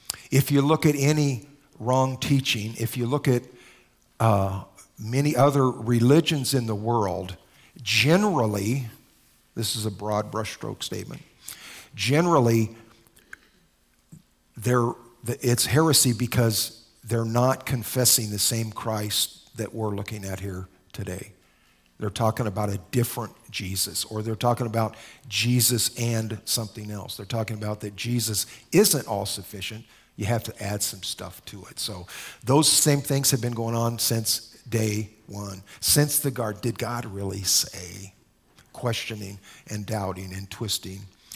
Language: English